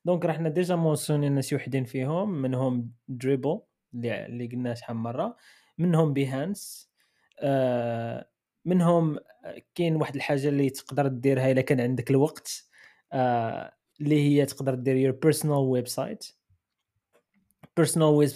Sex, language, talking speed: male, Arabic, 120 wpm